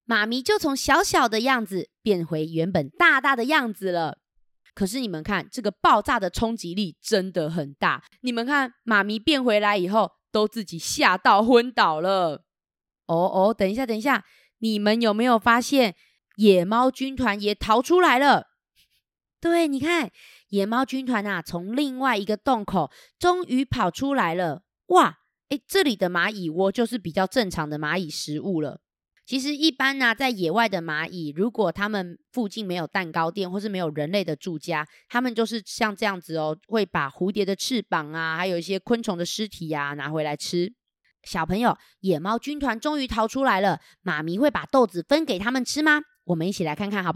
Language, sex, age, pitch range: Chinese, female, 20-39, 185-260 Hz